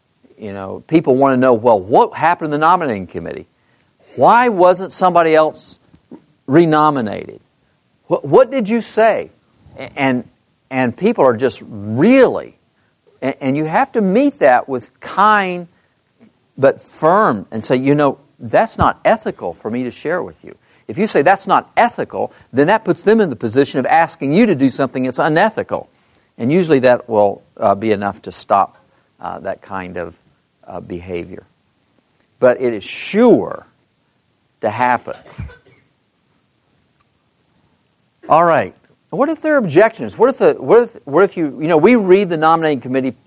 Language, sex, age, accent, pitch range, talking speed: English, male, 50-69, American, 130-210 Hz, 160 wpm